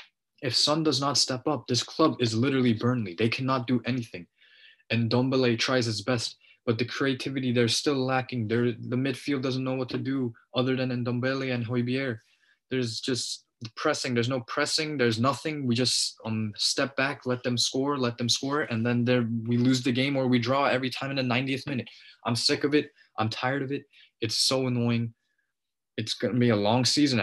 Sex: male